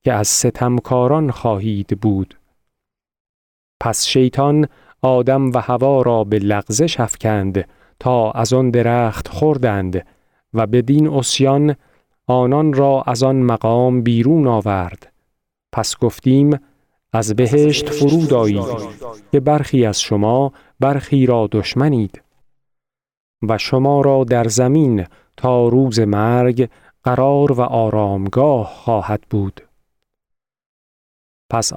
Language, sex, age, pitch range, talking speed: Persian, male, 40-59, 110-135 Hz, 105 wpm